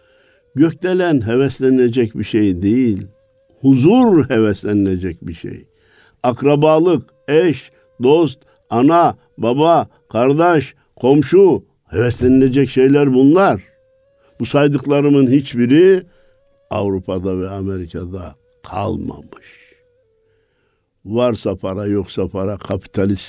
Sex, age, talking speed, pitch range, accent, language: male, 60-79, 80 wpm, 105-160 Hz, native, Turkish